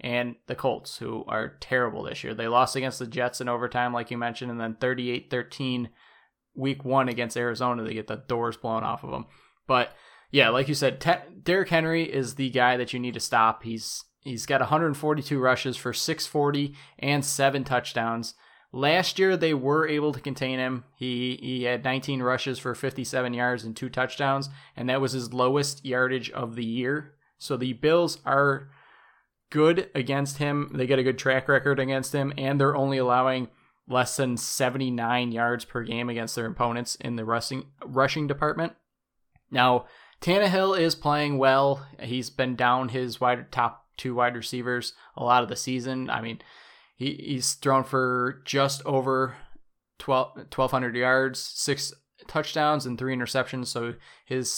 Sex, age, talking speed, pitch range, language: male, 20-39, 170 wpm, 125-140 Hz, English